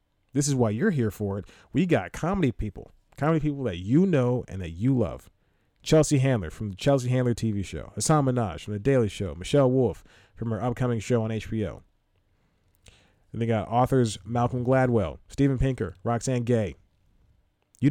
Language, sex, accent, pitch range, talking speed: English, male, American, 100-135 Hz, 180 wpm